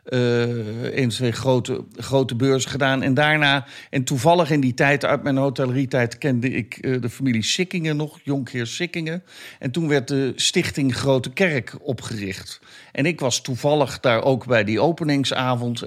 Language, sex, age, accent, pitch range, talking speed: Dutch, male, 50-69, Dutch, 120-145 Hz, 160 wpm